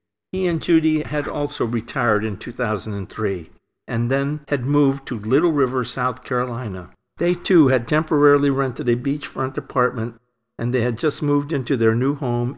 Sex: male